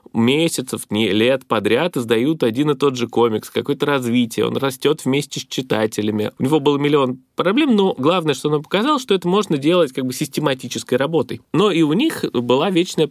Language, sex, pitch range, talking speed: Russian, male, 120-160 Hz, 190 wpm